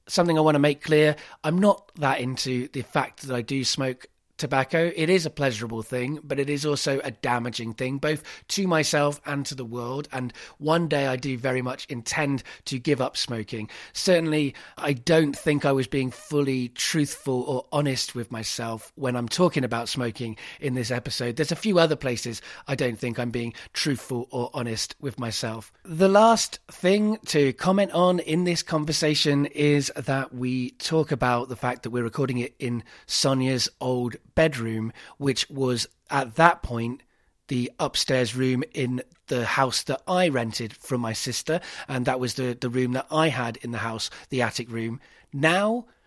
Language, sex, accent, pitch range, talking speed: English, male, British, 125-155 Hz, 185 wpm